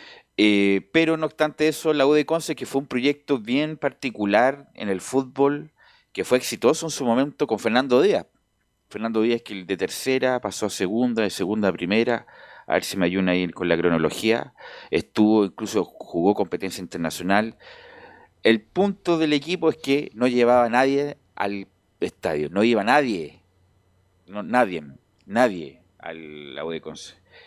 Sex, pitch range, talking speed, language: male, 95-140 Hz, 165 wpm, Spanish